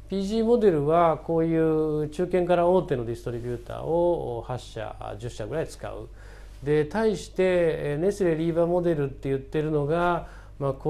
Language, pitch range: Japanese, 110-165 Hz